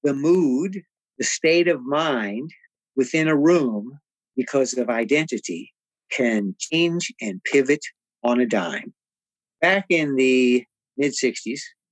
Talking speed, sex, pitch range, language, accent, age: 115 wpm, male, 120-170 Hz, English, American, 50-69